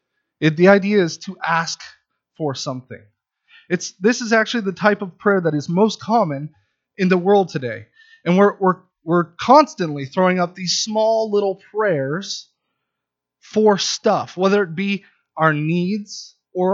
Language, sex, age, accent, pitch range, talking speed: English, male, 30-49, American, 155-210 Hz, 155 wpm